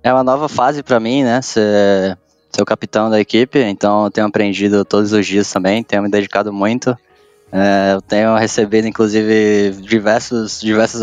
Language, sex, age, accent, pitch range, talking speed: Portuguese, male, 10-29, Brazilian, 100-115 Hz, 175 wpm